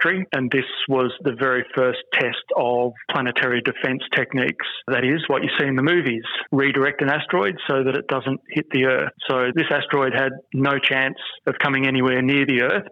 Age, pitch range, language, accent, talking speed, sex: 30-49, 130-140 Hz, English, Australian, 190 wpm, male